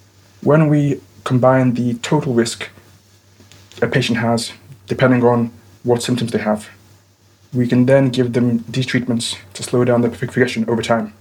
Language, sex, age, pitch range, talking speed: English, male, 20-39, 105-130 Hz, 155 wpm